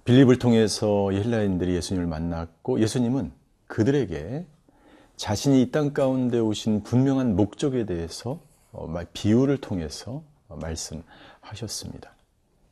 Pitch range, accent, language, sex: 95-130 Hz, native, Korean, male